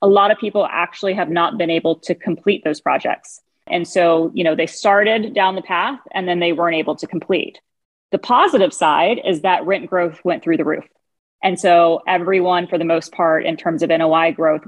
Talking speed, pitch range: 215 wpm, 165-190 Hz